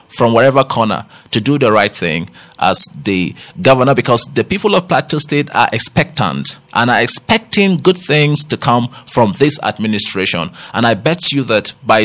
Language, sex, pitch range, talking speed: English, male, 120-170 Hz, 175 wpm